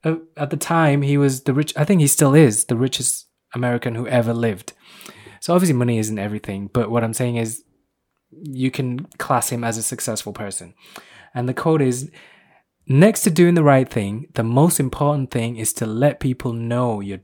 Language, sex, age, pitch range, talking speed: English, male, 20-39, 115-145 Hz, 195 wpm